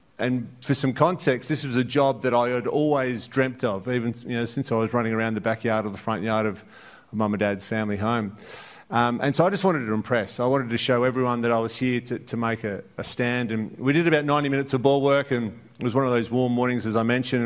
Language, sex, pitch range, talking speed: English, male, 120-140 Hz, 270 wpm